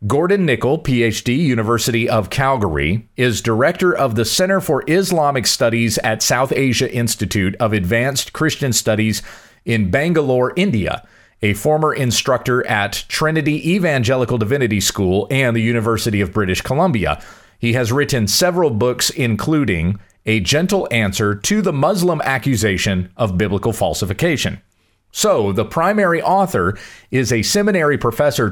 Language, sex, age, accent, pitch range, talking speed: English, male, 40-59, American, 105-145 Hz, 135 wpm